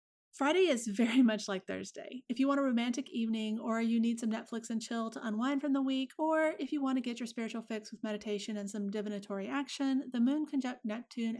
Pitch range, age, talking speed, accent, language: 215-275 Hz, 30-49, 225 wpm, American, English